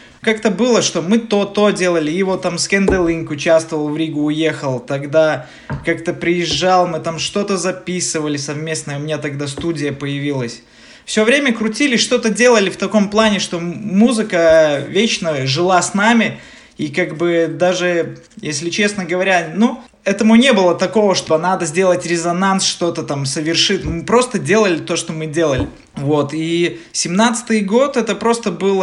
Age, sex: 20-39, male